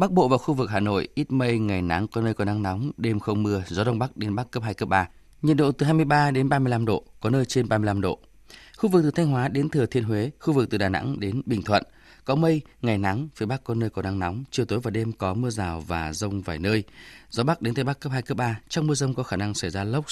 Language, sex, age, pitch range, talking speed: Vietnamese, male, 20-39, 105-140 Hz, 290 wpm